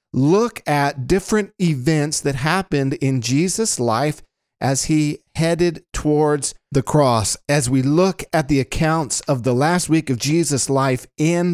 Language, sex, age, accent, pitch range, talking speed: English, male, 50-69, American, 120-160 Hz, 150 wpm